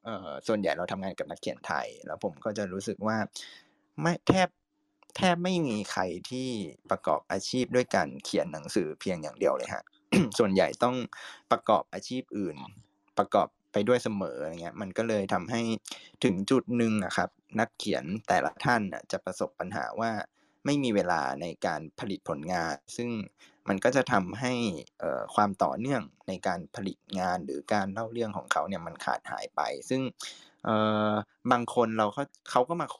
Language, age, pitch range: Thai, 20-39, 100-125 Hz